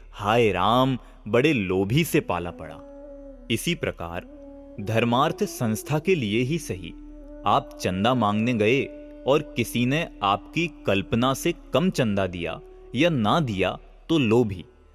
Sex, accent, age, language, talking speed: male, native, 30-49, Hindi, 135 wpm